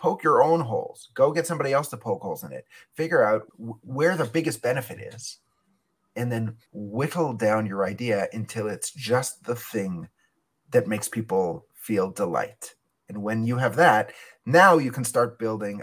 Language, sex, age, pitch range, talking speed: English, male, 30-49, 105-130 Hz, 180 wpm